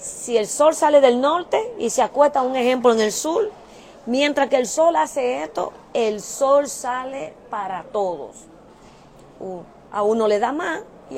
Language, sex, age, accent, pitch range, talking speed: Spanish, female, 30-49, American, 220-290 Hz, 165 wpm